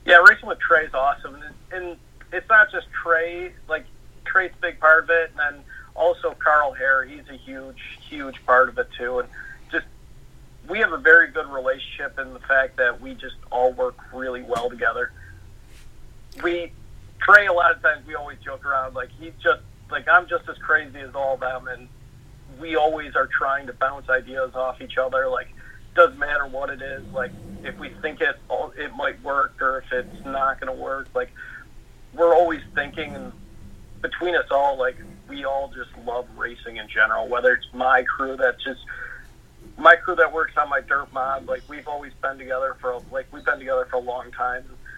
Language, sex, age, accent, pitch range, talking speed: English, male, 40-59, American, 130-165 Hz, 200 wpm